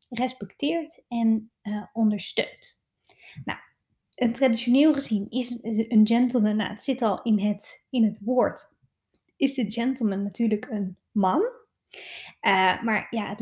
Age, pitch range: 20-39, 215-255 Hz